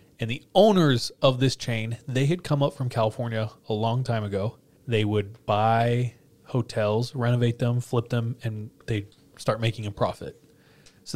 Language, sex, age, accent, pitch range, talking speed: English, male, 20-39, American, 110-130 Hz, 170 wpm